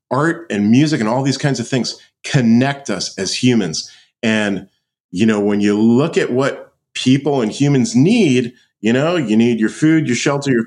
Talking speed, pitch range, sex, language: 190 wpm, 100-130 Hz, male, English